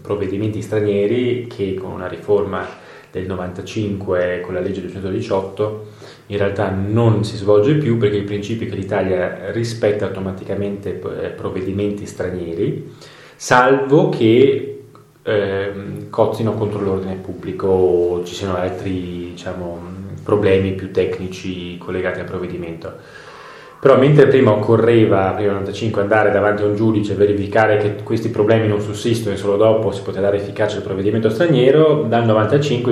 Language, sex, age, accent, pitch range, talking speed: Italian, male, 30-49, native, 95-110 Hz, 140 wpm